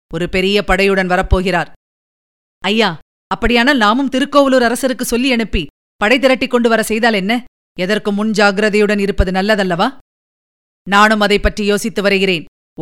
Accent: native